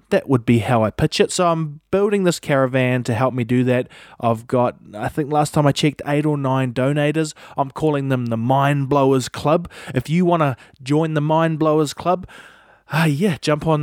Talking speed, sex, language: 215 wpm, male, English